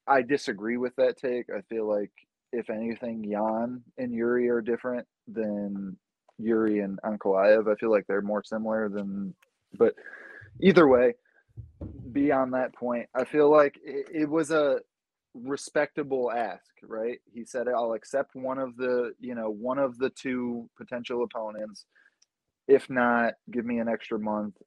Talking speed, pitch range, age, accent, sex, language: 155 wpm, 105-130 Hz, 20-39, American, male, English